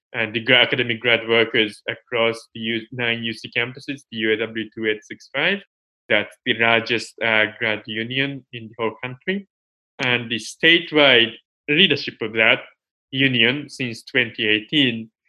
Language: English